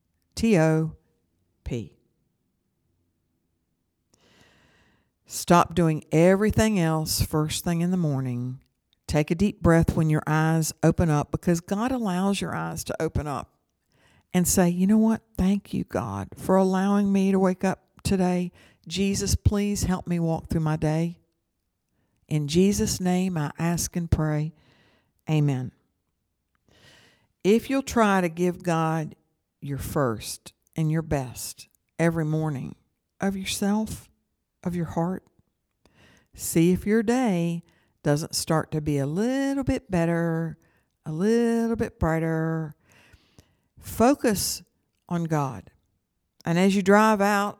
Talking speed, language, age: 125 wpm, English, 60-79